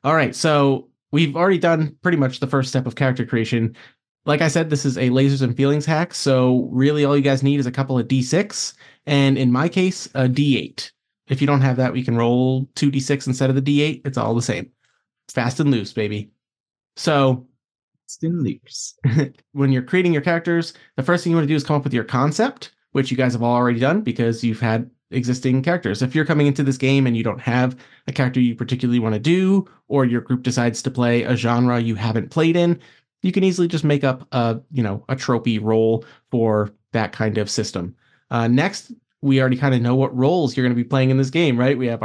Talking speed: 225 wpm